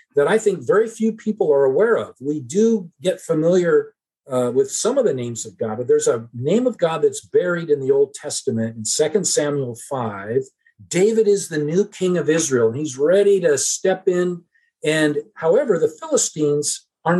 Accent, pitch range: American, 145-230 Hz